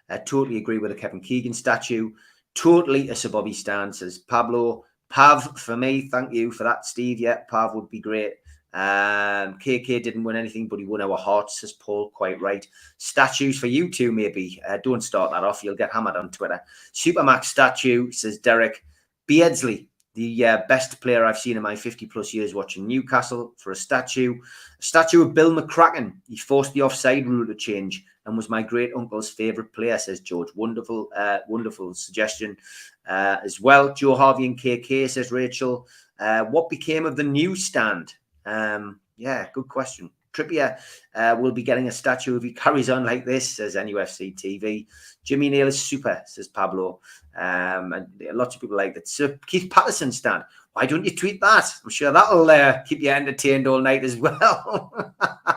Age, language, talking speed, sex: 30-49, English, 185 wpm, male